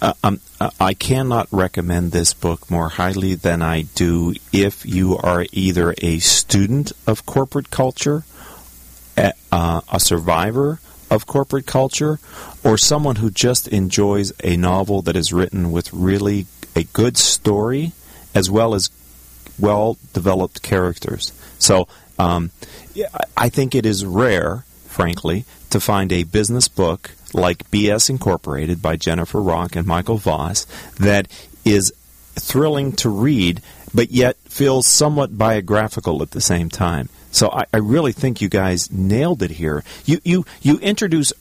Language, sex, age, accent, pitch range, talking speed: English, male, 40-59, American, 85-120 Hz, 140 wpm